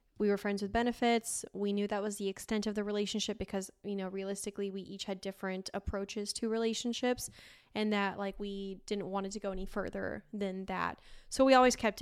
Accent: American